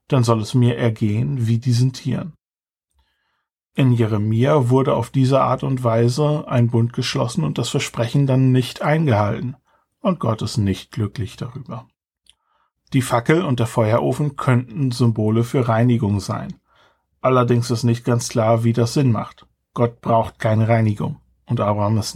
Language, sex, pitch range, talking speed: German, male, 115-130 Hz, 155 wpm